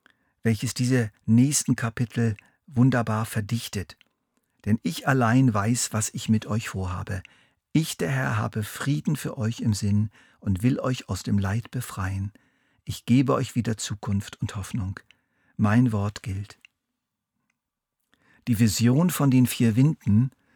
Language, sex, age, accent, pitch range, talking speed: German, male, 50-69, German, 105-125 Hz, 135 wpm